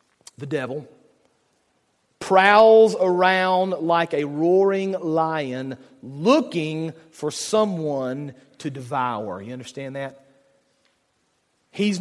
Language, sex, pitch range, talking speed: English, male, 135-205 Hz, 85 wpm